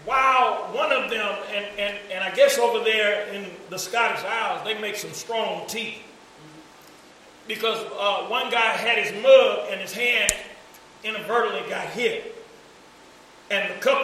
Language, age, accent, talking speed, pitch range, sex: English, 40-59, American, 155 wpm, 200-245 Hz, male